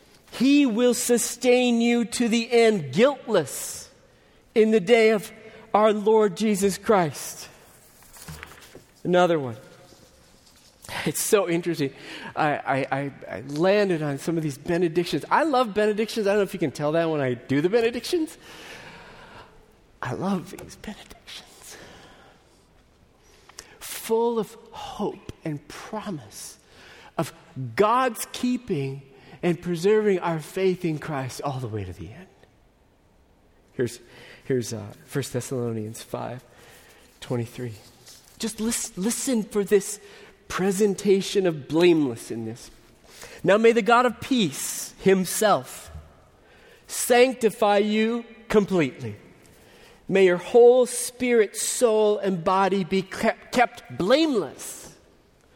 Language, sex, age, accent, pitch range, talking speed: English, male, 40-59, American, 135-220 Hz, 115 wpm